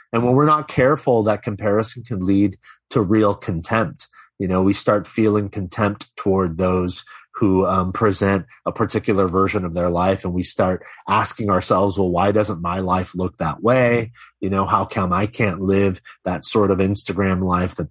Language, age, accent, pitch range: English, 30-49, American, 95-110 Hz